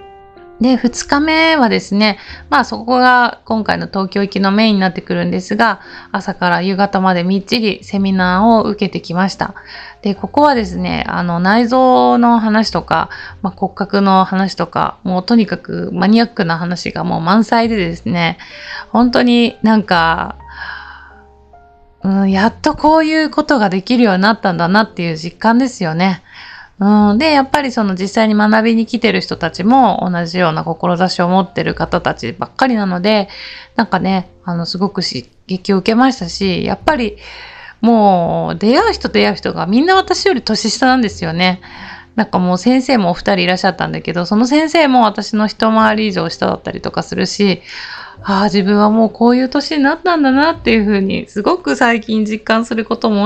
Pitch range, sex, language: 185-240 Hz, female, Japanese